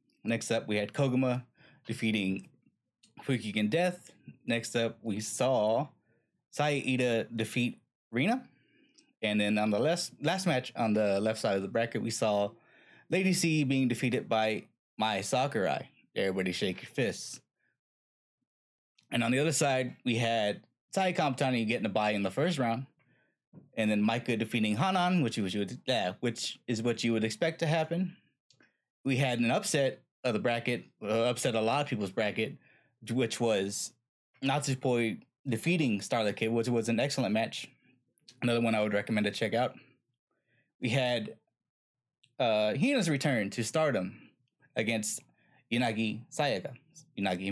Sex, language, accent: male, English, American